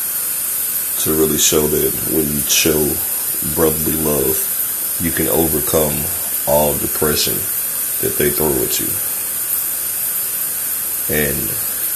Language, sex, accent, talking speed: English, male, American, 100 wpm